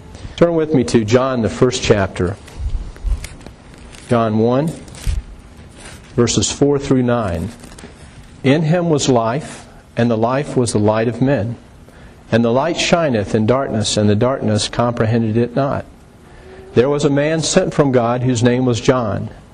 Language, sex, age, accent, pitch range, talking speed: English, male, 50-69, American, 105-130 Hz, 150 wpm